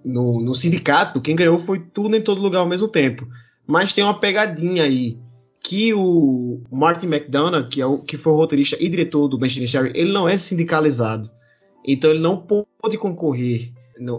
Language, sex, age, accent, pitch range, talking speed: Portuguese, male, 20-39, Brazilian, 140-175 Hz, 180 wpm